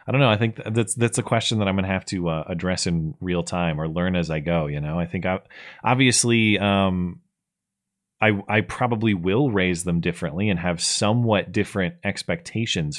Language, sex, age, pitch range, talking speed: English, male, 30-49, 90-115 Hz, 205 wpm